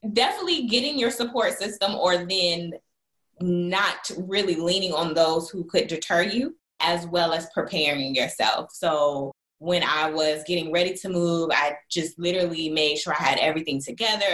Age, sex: 10-29, female